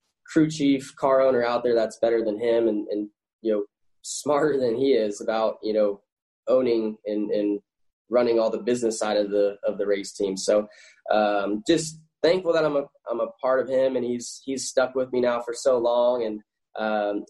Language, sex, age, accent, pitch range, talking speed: English, male, 10-29, American, 110-135 Hz, 205 wpm